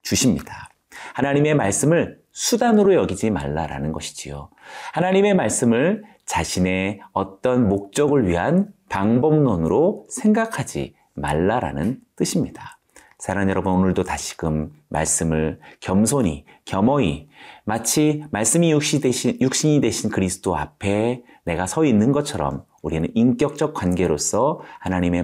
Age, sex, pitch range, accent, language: 40-59, male, 90-145 Hz, native, Korean